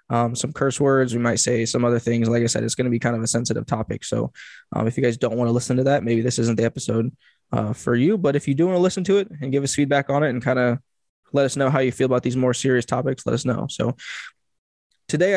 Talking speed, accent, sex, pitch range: 295 wpm, American, male, 120-140 Hz